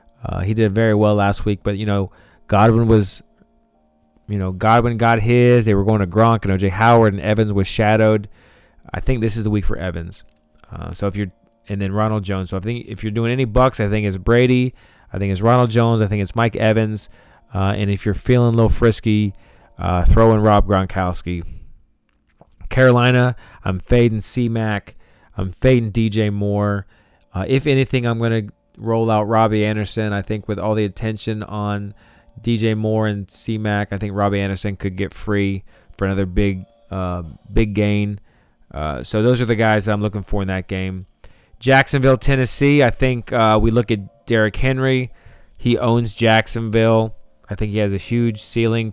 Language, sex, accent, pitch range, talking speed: English, male, American, 100-115 Hz, 195 wpm